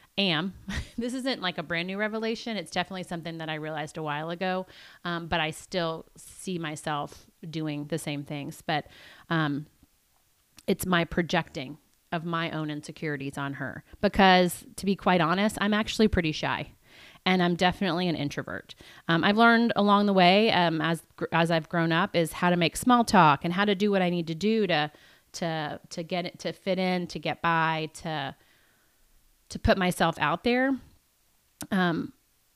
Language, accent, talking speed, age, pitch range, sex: English, American, 180 wpm, 30-49, 160-205 Hz, female